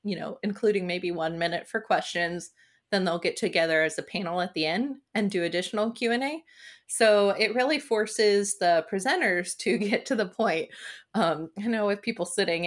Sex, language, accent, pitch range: female, English, American, 175-215 Hz